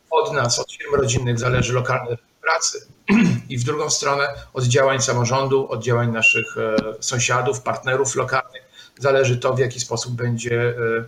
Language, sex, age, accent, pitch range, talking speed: Polish, male, 50-69, native, 120-135 Hz, 145 wpm